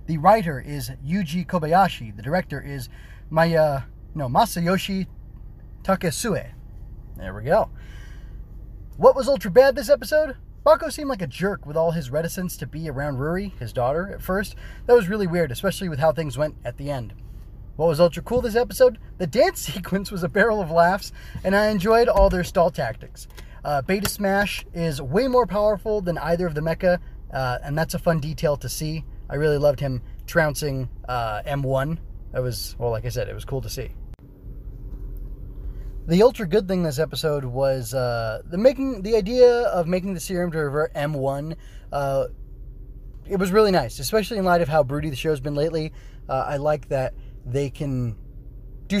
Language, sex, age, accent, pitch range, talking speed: English, male, 20-39, American, 125-175 Hz, 185 wpm